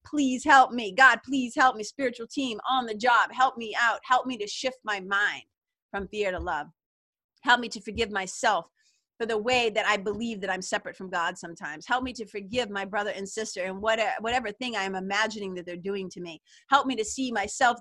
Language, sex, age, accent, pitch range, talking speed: English, female, 30-49, American, 200-260 Hz, 220 wpm